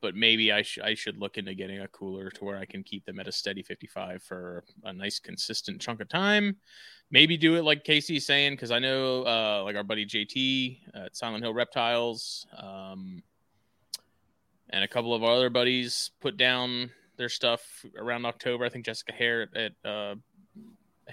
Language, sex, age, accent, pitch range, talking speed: English, male, 20-39, American, 105-130 Hz, 185 wpm